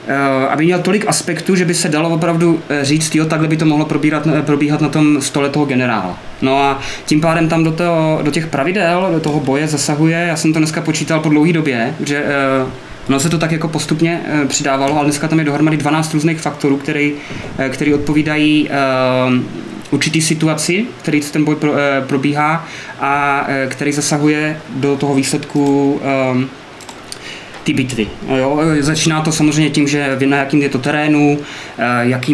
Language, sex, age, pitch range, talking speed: Czech, male, 20-39, 130-150 Hz, 165 wpm